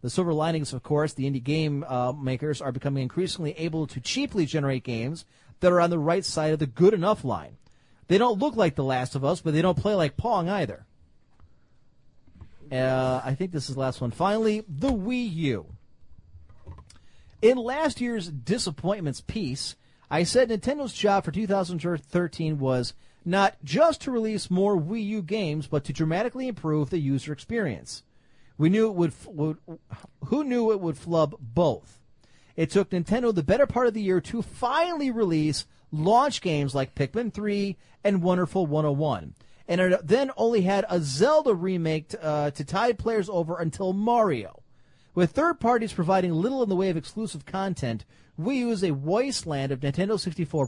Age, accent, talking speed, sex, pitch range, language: 40-59, American, 175 wpm, male, 140-210 Hz, English